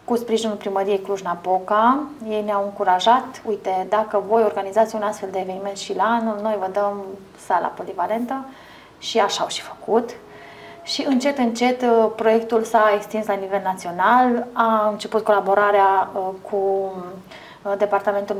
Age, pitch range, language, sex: 20-39, 195-225 Hz, Romanian, female